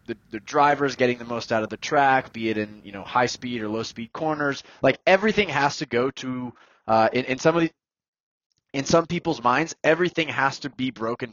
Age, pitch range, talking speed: 20-39, 110-145 Hz, 220 wpm